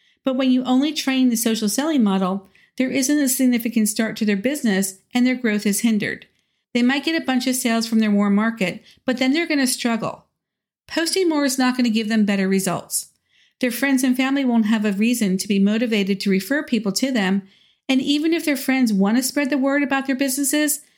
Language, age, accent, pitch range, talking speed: English, 50-69, American, 210-265 Hz, 225 wpm